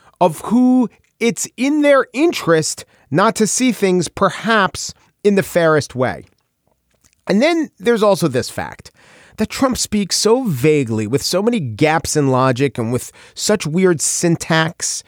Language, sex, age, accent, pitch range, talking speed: English, male, 40-59, American, 130-180 Hz, 145 wpm